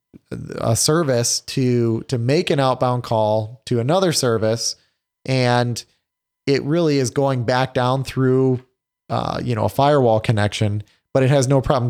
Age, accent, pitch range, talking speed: 30-49, American, 110-130 Hz, 150 wpm